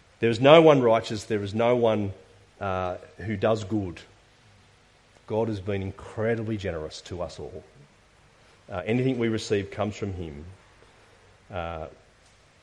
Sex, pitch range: male, 95-120 Hz